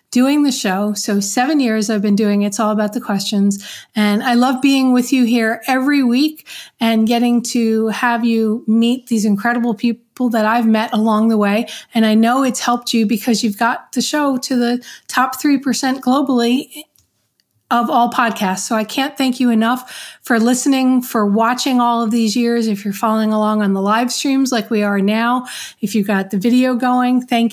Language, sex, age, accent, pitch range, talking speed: English, female, 40-59, American, 215-250 Hz, 195 wpm